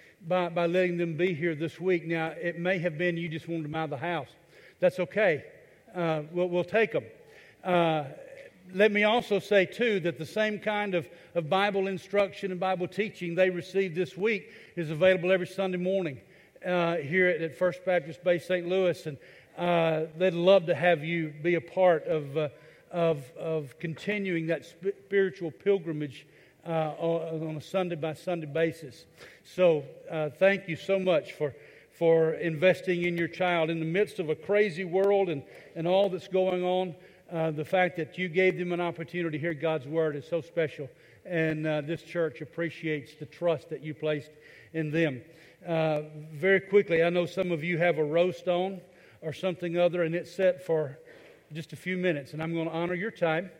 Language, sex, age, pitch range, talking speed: English, male, 50-69, 160-185 Hz, 190 wpm